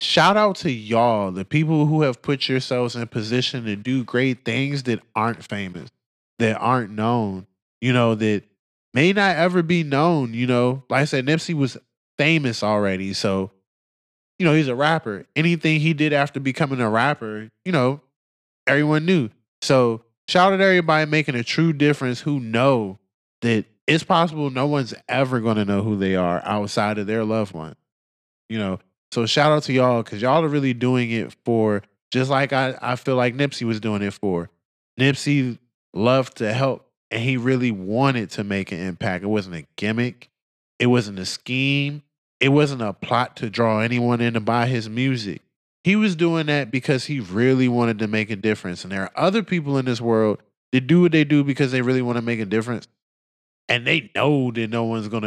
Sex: male